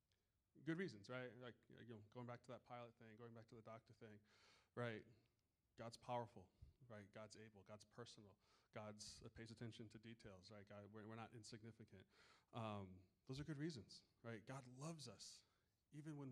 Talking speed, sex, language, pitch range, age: 180 wpm, male, English, 105-125 Hz, 30-49